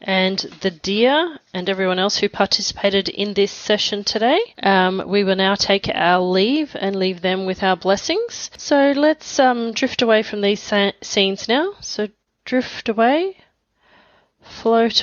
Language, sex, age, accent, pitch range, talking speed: English, female, 30-49, Australian, 185-230 Hz, 150 wpm